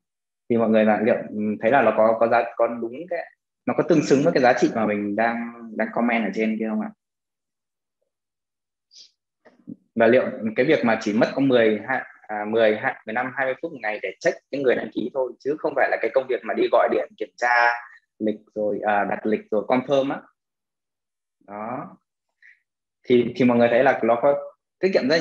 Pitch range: 110-145 Hz